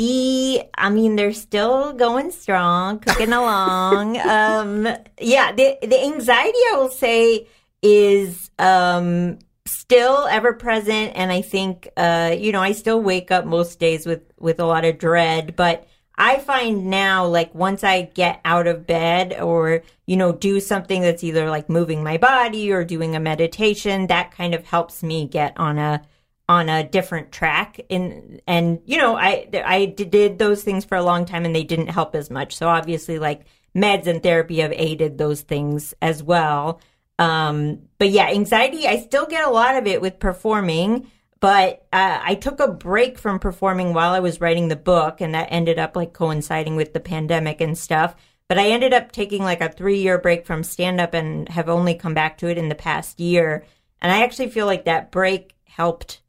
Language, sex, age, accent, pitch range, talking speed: English, female, 40-59, American, 165-210 Hz, 185 wpm